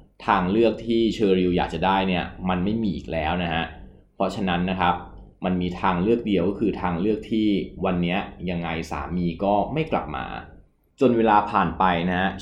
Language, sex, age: Thai, male, 20-39